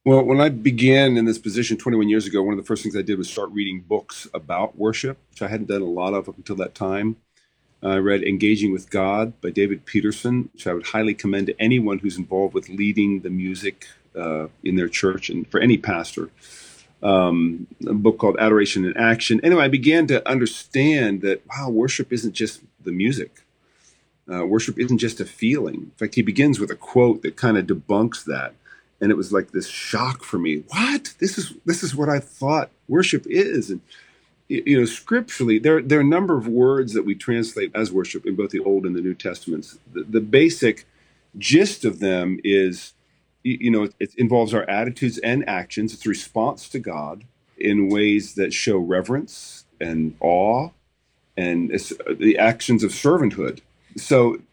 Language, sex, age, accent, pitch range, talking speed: English, male, 40-59, American, 100-130 Hz, 190 wpm